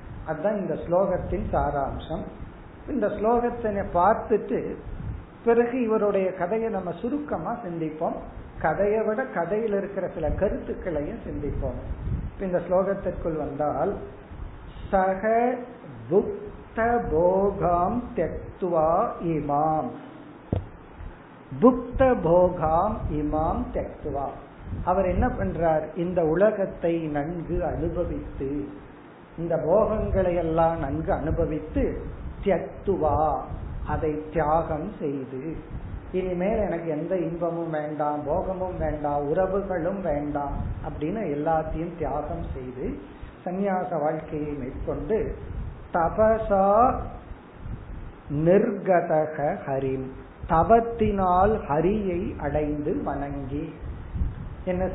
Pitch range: 150-200 Hz